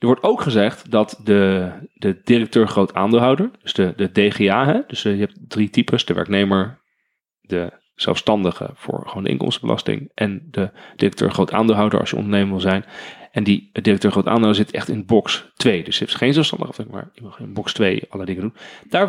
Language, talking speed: Dutch, 180 wpm